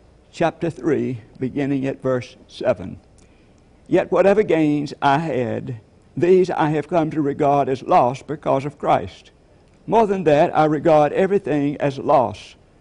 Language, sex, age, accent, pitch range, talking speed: English, male, 60-79, American, 125-155 Hz, 140 wpm